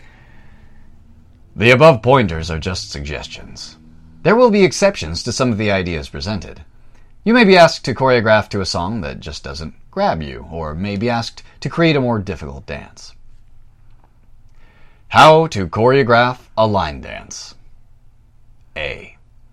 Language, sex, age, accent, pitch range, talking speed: English, male, 30-49, American, 95-140 Hz, 145 wpm